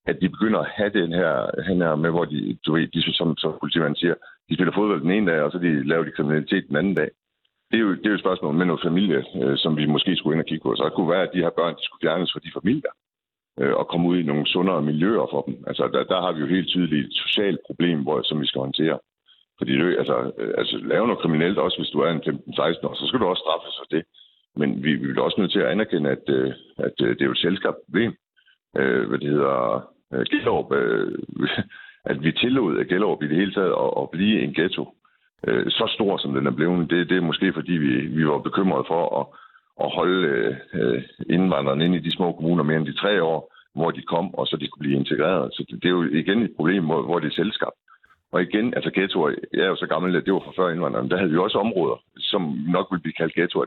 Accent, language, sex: native, Danish, male